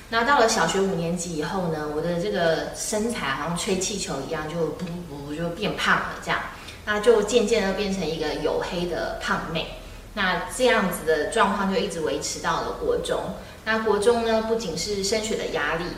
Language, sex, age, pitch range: Chinese, female, 20-39, 170-235 Hz